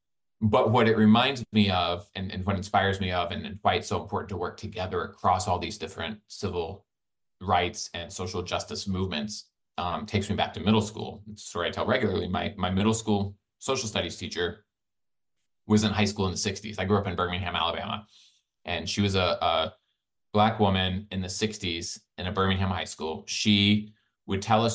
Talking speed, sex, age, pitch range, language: 200 wpm, male, 20-39, 90-105 Hz, English